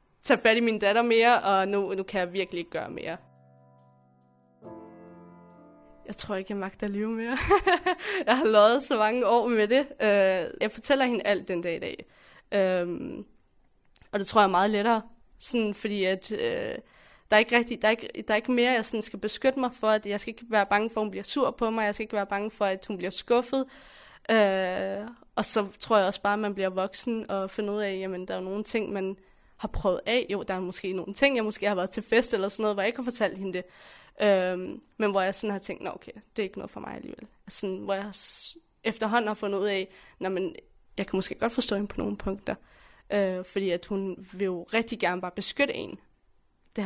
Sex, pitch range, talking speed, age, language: female, 190-225 Hz, 220 wpm, 20-39, Danish